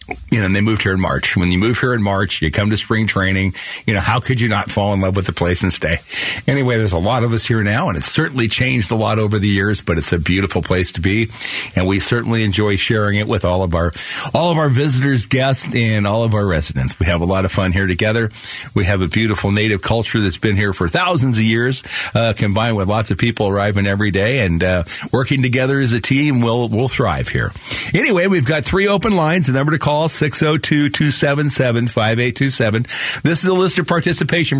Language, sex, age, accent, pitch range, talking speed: English, male, 50-69, American, 100-140 Hz, 235 wpm